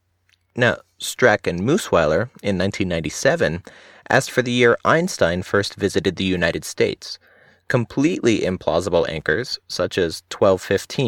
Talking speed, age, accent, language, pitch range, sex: 120 wpm, 30-49, American, English, 90-125 Hz, male